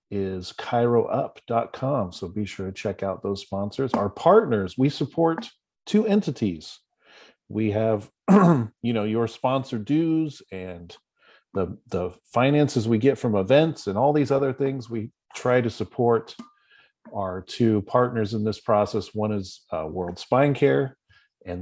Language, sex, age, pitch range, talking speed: English, male, 40-59, 100-130 Hz, 145 wpm